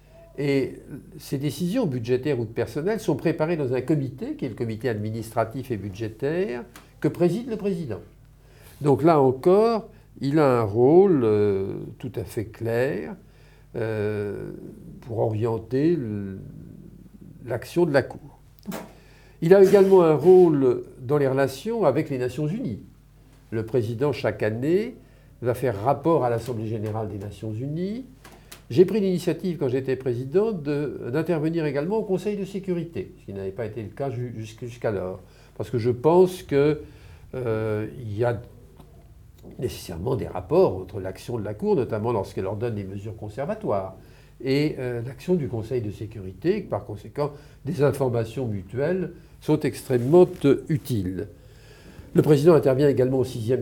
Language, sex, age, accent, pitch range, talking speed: English, male, 50-69, French, 115-160 Hz, 150 wpm